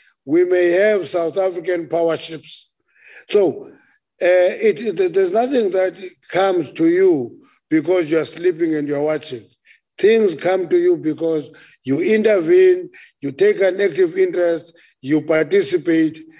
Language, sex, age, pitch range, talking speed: English, male, 50-69, 150-220 Hz, 140 wpm